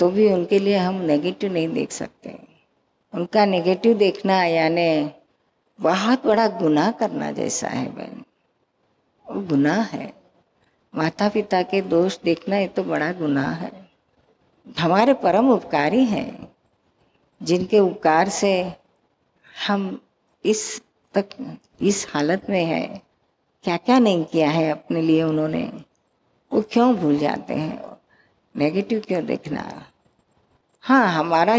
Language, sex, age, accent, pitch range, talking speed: Hindi, female, 50-69, native, 175-220 Hz, 125 wpm